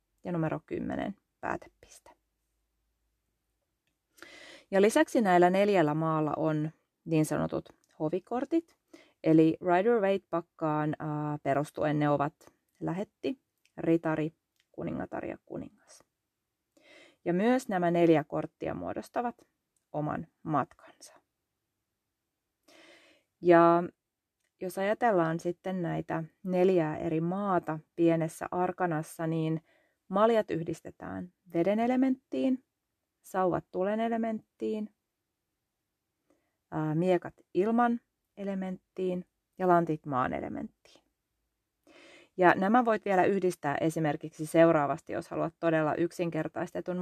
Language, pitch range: Finnish, 160-205 Hz